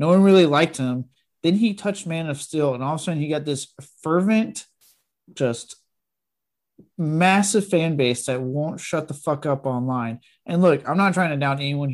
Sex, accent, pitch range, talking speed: male, American, 130-165 Hz, 195 wpm